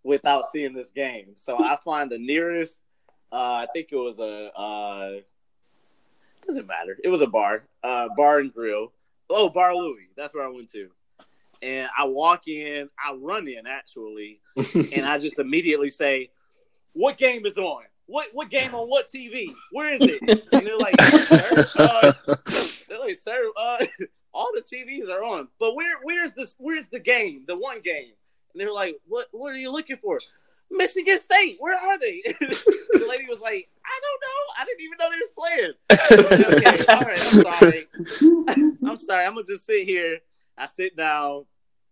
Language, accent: English, American